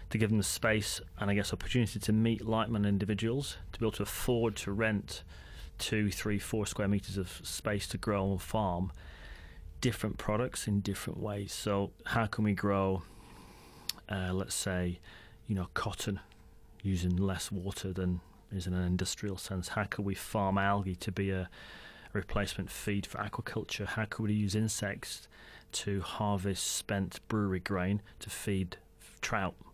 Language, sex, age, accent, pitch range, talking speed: English, male, 30-49, British, 95-110 Hz, 165 wpm